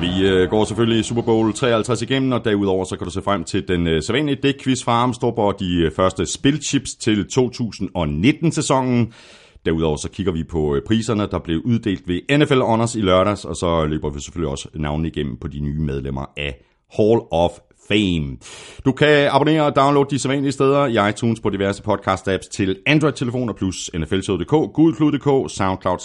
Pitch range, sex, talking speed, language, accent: 85-130 Hz, male, 170 wpm, Danish, native